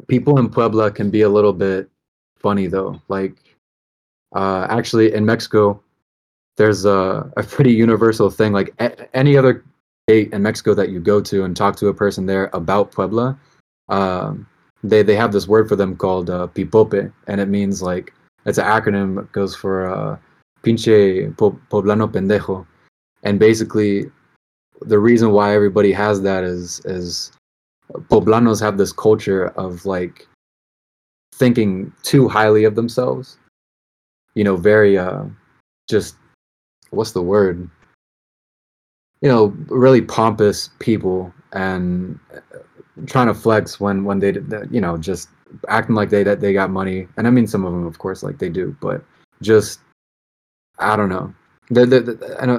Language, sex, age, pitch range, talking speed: English, male, 20-39, 95-110 Hz, 150 wpm